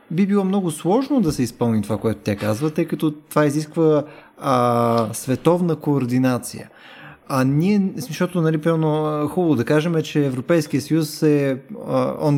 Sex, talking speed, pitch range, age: male, 165 wpm, 135-185 Hz, 20-39